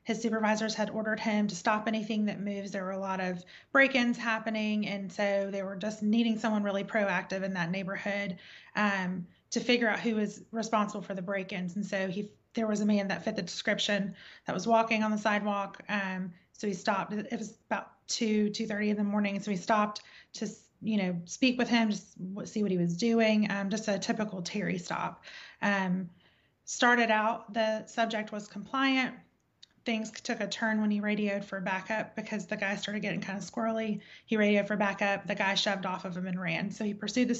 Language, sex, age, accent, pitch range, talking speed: English, female, 30-49, American, 195-220 Hz, 205 wpm